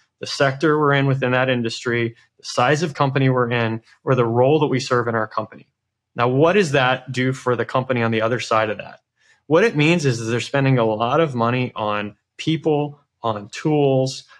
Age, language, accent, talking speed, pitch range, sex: 20-39, English, American, 210 wpm, 125-155 Hz, male